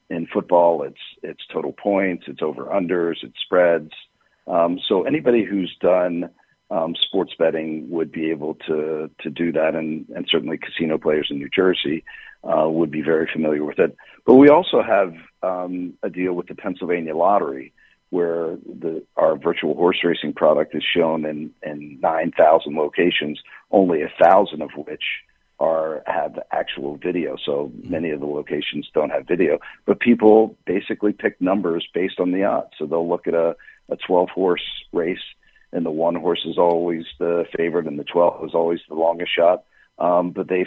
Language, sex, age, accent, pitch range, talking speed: English, male, 50-69, American, 80-90 Hz, 175 wpm